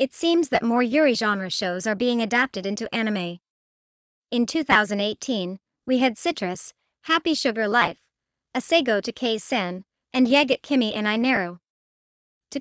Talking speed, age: 150 wpm, 40-59